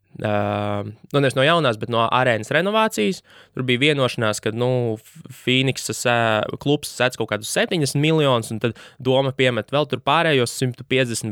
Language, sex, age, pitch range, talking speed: English, male, 20-39, 110-135 Hz, 150 wpm